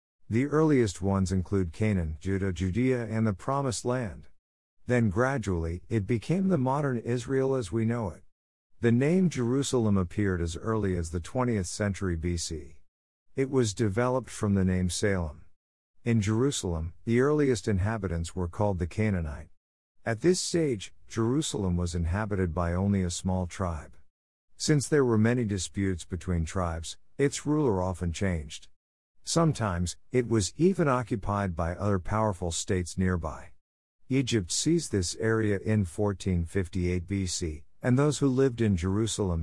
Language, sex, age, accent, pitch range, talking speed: German, male, 50-69, American, 85-120 Hz, 145 wpm